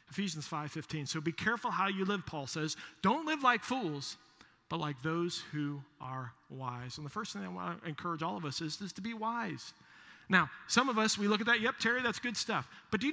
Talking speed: 240 wpm